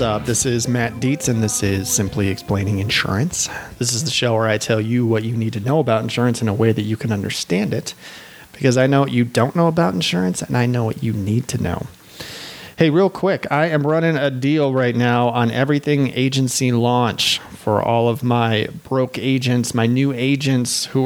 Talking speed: 215 wpm